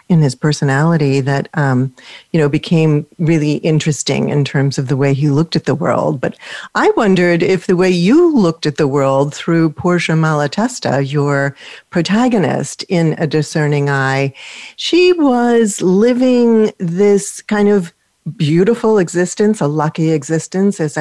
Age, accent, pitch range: 40-59, American, 150-200 Hz